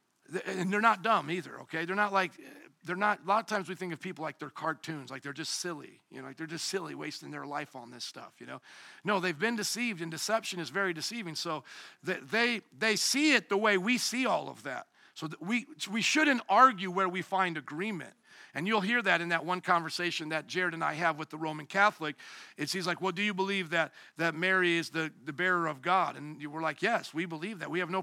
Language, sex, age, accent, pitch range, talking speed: English, male, 50-69, American, 170-245 Hz, 245 wpm